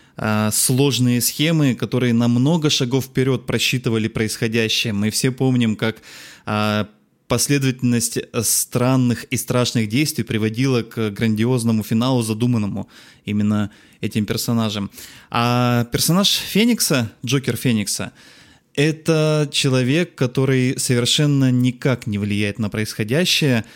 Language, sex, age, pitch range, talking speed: Russian, male, 20-39, 115-135 Hz, 100 wpm